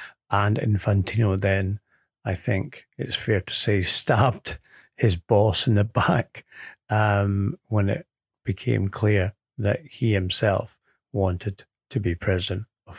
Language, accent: English, British